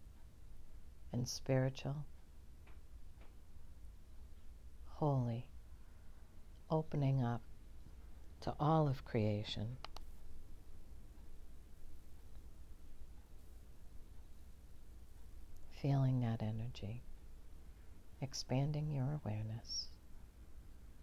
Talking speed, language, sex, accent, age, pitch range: 40 wpm, English, female, American, 60-79, 75-125 Hz